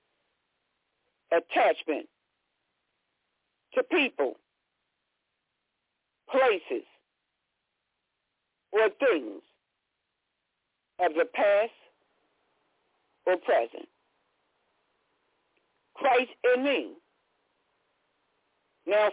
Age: 50-69